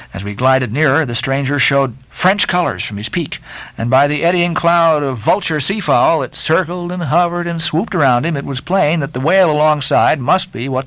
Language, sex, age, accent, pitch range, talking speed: English, male, 60-79, American, 120-170 Hz, 210 wpm